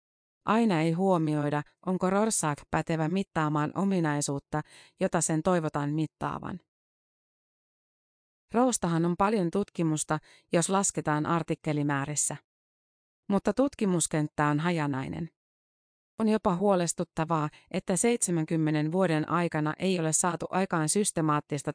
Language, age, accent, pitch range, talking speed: Finnish, 30-49, native, 155-185 Hz, 95 wpm